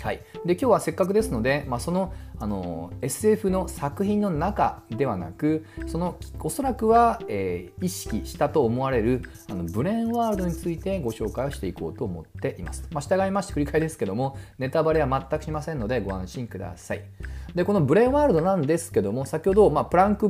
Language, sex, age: Japanese, male, 40-59